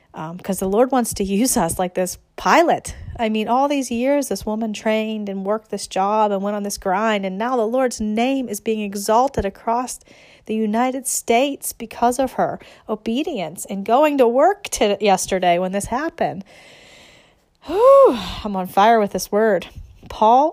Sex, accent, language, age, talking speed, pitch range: female, American, English, 30-49, 170 wpm, 190-240 Hz